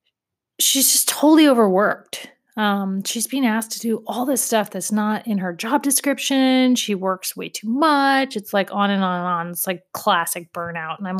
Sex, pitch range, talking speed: female, 195-250 Hz, 200 wpm